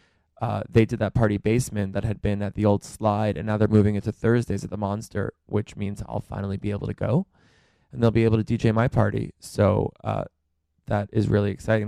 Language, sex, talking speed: English, male, 220 wpm